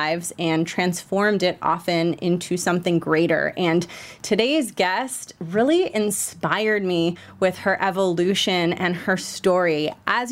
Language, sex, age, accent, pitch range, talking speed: English, female, 30-49, American, 175-210 Hz, 120 wpm